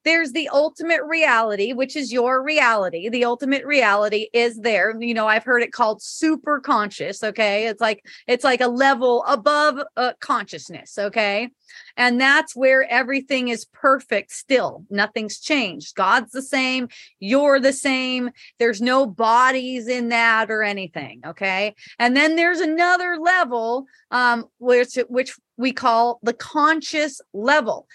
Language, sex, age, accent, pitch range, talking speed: English, female, 30-49, American, 235-310 Hz, 145 wpm